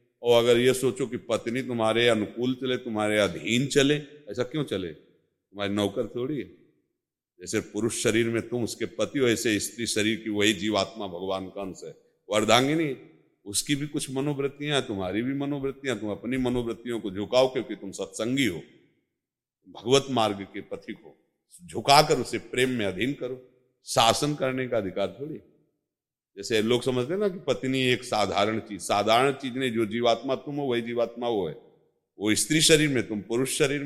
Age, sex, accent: 50-69, male, native